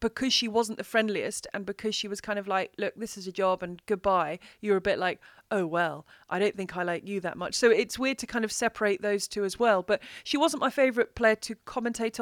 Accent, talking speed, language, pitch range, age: British, 255 wpm, English, 190-225 Hz, 30-49